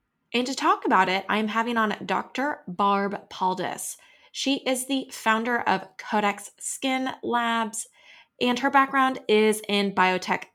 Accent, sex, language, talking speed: American, female, English, 140 wpm